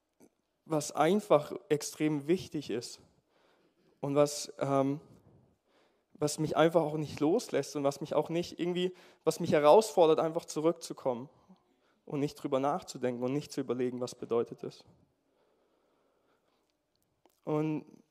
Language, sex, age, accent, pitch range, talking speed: German, male, 20-39, German, 145-170 Hz, 125 wpm